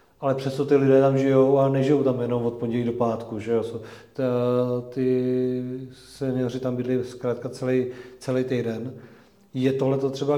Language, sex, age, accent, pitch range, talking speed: Czech, male, 40-59, native, 125-140 Hz, 155 wpm